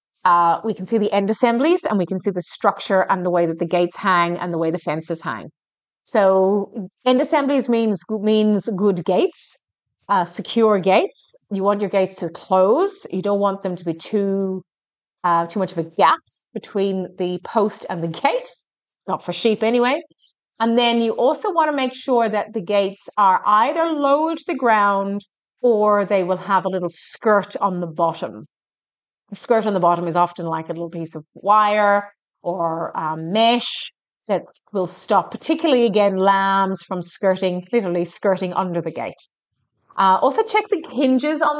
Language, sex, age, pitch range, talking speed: English, female, 30-49, 180-235 Hz, 185 wpm